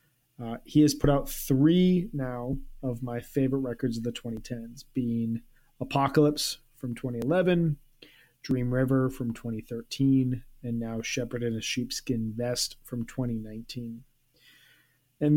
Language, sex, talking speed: English, male, 125 wpm